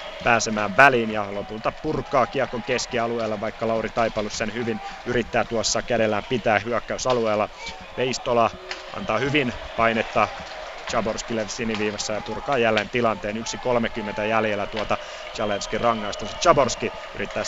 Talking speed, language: 115 wpm, Finnish